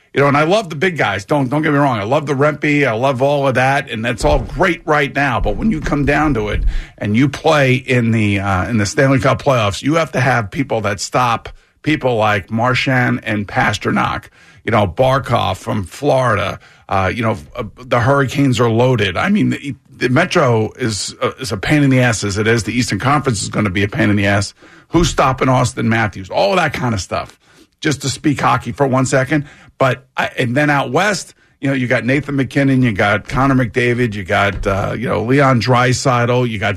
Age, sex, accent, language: 50-69, male, American, English